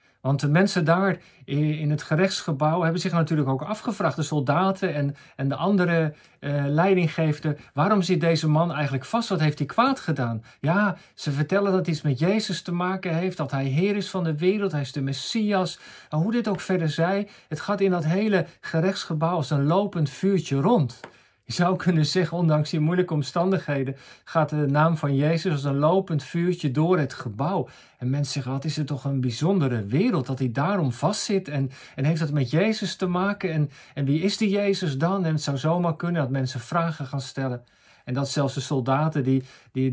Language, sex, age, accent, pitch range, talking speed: Dutch, male, 50-69, Dutch, 140-180 Hz, 205 wpm